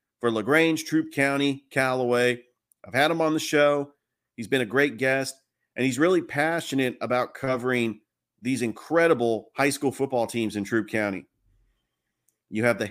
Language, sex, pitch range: English, male, 110-135 Hz